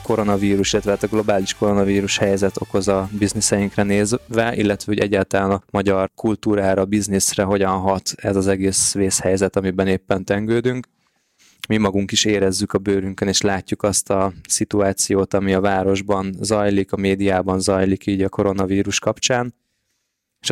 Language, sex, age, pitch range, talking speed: Hungarian, male, 20-39, 95-105 Hz, 145 wpm